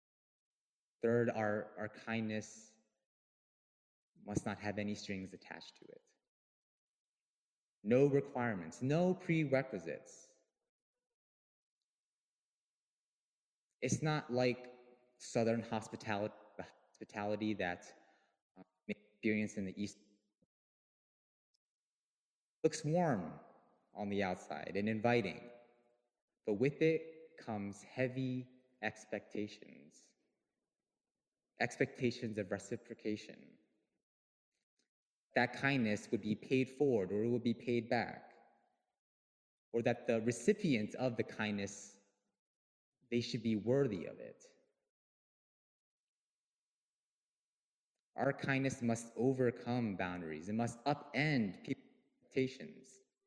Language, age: English, 20-39